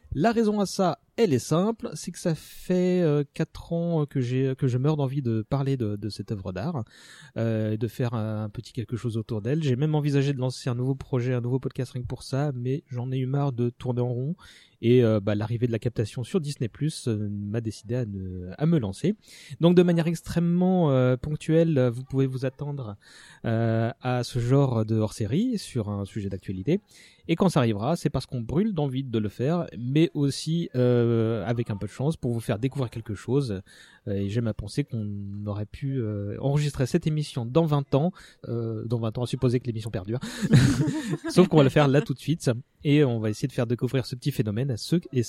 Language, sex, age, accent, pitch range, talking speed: French, male, 30-49, French, 115-155 Hz, 220 wpm